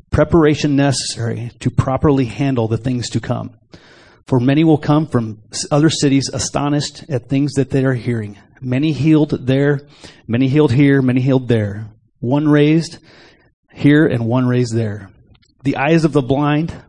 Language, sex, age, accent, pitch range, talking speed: English, male, 30-49, American, 115-150 Hz, 155 wpm